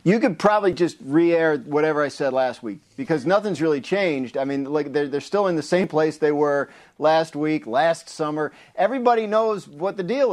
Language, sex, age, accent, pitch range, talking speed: English, male, 50-69, American, 140-180 Hz, 205 wpm